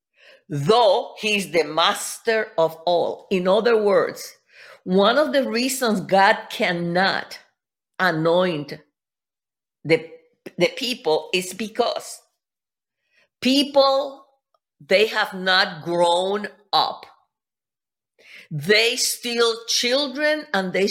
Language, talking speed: English, 90 wpm